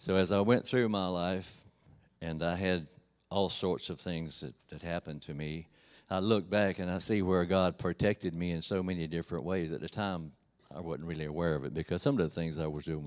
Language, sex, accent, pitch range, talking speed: English, male, American, 80-95 Hz, 235 wpm